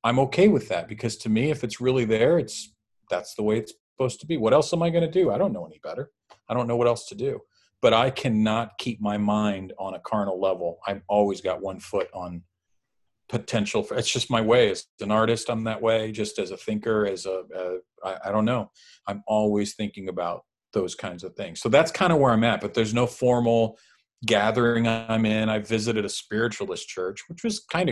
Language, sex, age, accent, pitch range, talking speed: English, male, 40-59, American, 105-120 Hz, 230 wpm